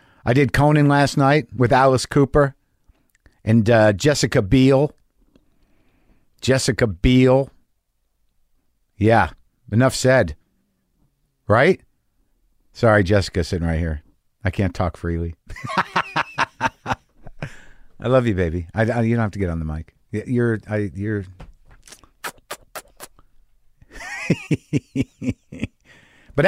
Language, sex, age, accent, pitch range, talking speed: English, male, 50-69, American, 105-140 Hz, 100 wpm